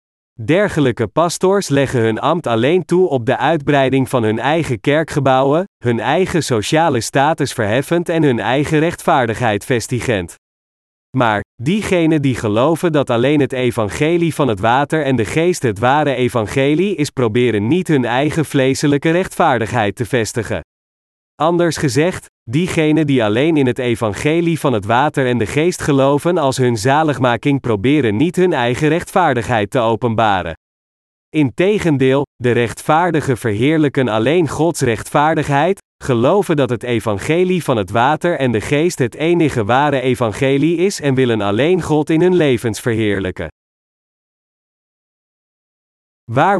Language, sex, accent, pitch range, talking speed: Dutch, male, Dutch, 115-160 Hz, 135 wpm